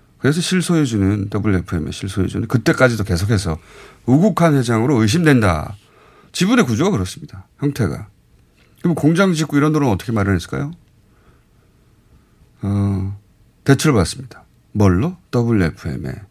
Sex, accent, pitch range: male, native, 100-170 Hz